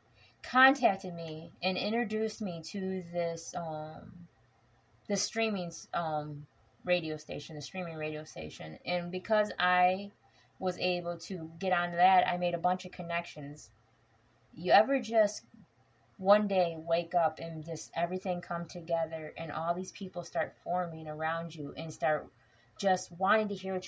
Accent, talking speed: American, 150 wpm